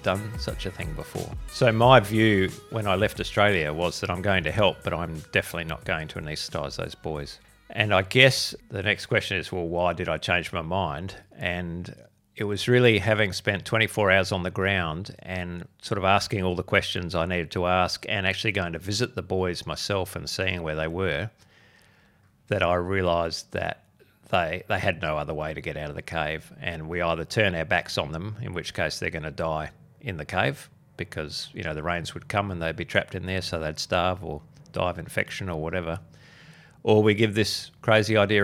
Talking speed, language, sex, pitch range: 215 wpm, English, male, 85-105 Hz